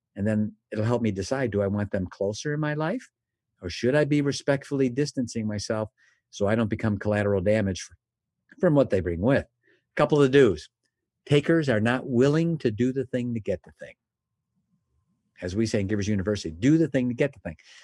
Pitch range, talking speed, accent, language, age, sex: 110-150 Hz, 205 wpm, American, English, 50-69, male